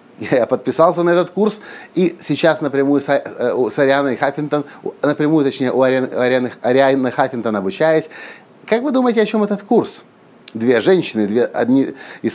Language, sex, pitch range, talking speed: Russian, male, 130-175 Hz, 145 wpm